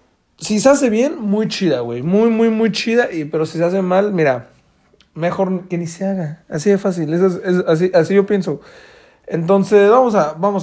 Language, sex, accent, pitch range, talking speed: Spanish, male, Mexican, 160-225 Hz, 175 wpm